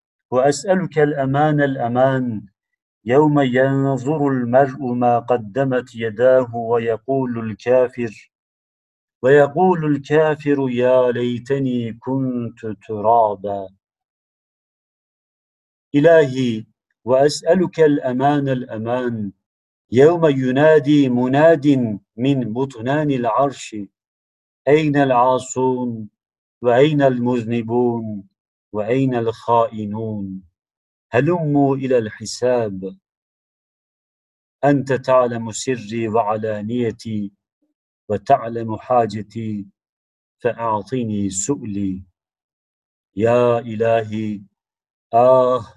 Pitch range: 110-135 Hz